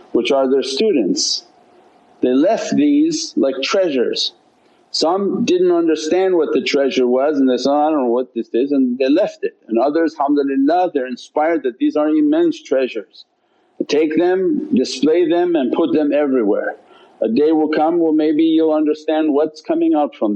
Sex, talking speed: male, 175 wpm